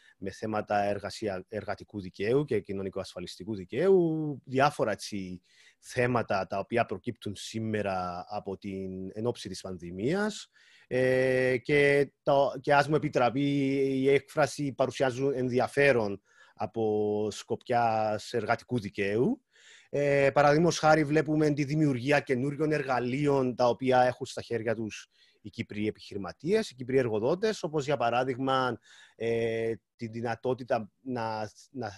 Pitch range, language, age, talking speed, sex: 115-140 Hz, Greek, 30-49, 120 wpm, male